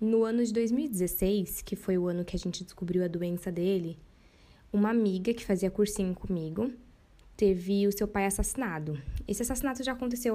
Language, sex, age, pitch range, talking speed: Portuguese, female, 10-29, 190-235 Hz, 175 wpm